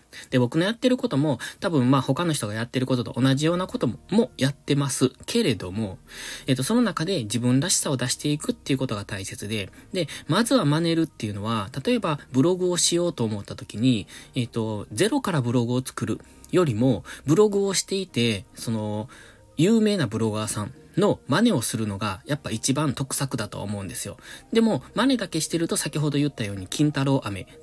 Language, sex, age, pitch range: Japanese, male, 20-39, 110-160 Hz